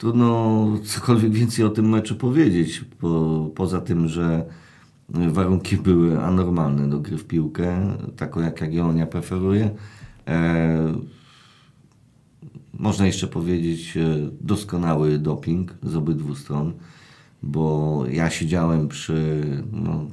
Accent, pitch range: native, 75-95 Hz